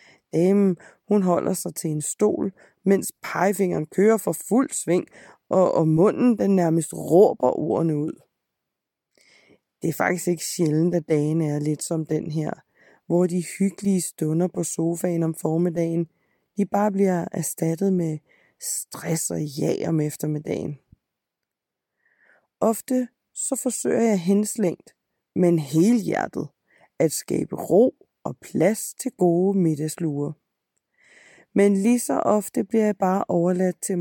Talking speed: 135 wpm